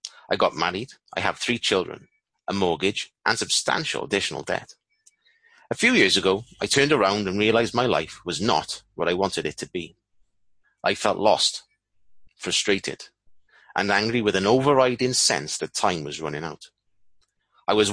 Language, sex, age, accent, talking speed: English, male, 30-49, British, 165 wpm